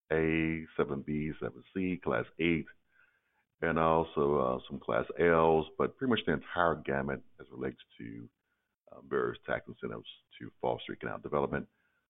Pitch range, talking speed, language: 65-80 Hz, 160 wpm, English